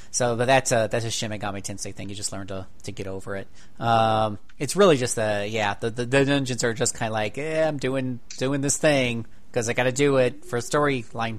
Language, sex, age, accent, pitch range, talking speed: English, male, 30-49, American, 110-140 Hz, 240 wpm